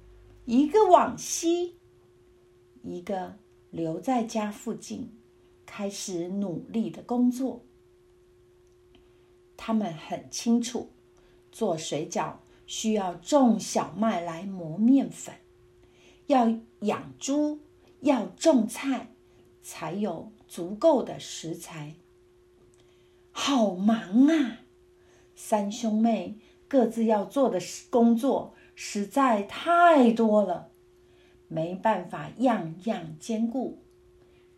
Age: 50-69